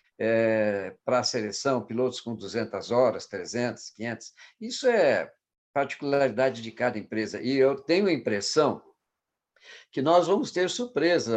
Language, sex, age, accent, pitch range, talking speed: Portuguese, male, 60-79, Brazilian, 120-160 Hz, 135 wpm